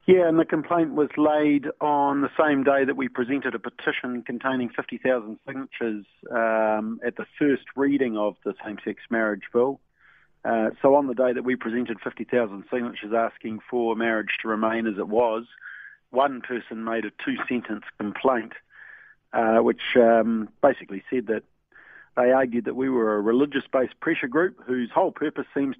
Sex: male